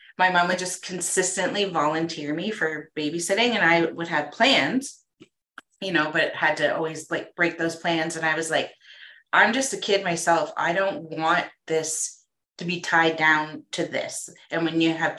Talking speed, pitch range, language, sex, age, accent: 185 wpm, 155-185 Hz, English, female, 30-49, American